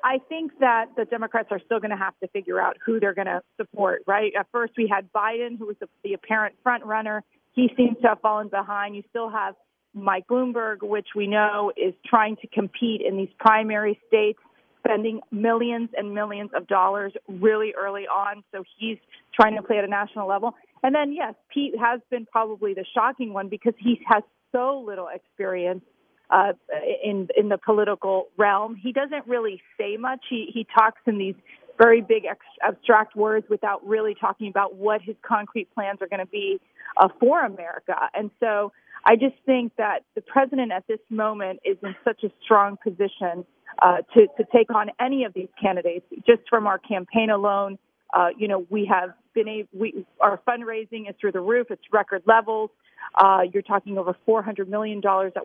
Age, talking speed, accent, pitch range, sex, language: 40-59, 190 wpm, American, 200-235 Hz, female, English